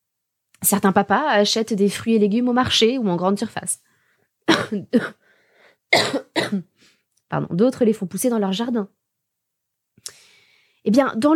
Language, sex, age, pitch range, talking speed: French, female, 20-39, 180-250 Hz, 125 wpm